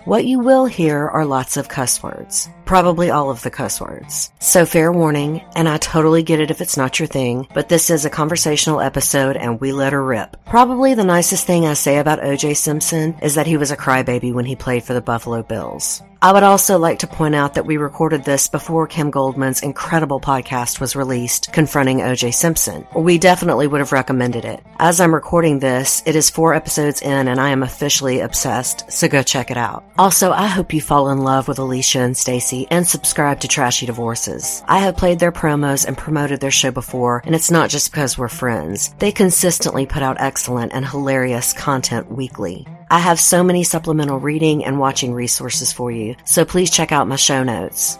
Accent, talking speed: American, 210 wpm